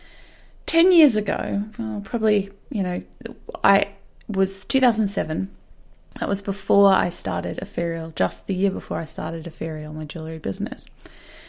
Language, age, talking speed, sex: English, 30-49, 130 wpm, female